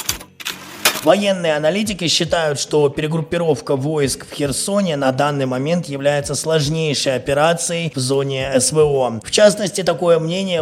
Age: 20-39